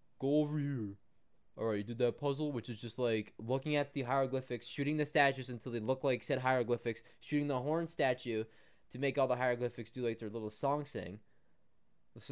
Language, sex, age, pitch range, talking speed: English, male, 20-39, 110-150 Hz, 200 wpm